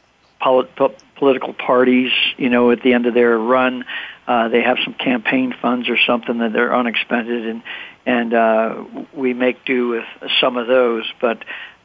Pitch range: 120-130 Hz